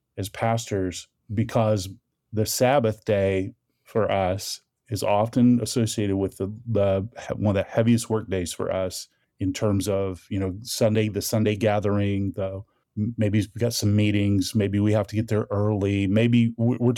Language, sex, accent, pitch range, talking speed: English, male, American, 100-120 Hz, 165 wpm